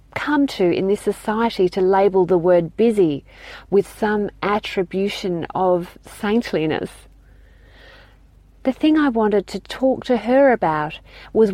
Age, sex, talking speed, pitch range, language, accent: 40-59, female, 130 wpm, 185-245 Hz, English, Australian